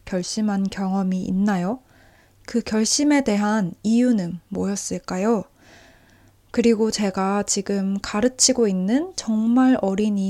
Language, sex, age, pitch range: Korean, female, 20-39, 195-235 Hz